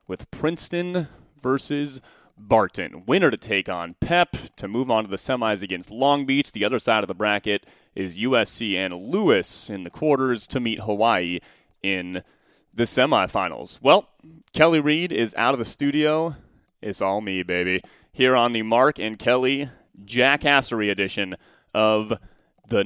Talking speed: 155 wpm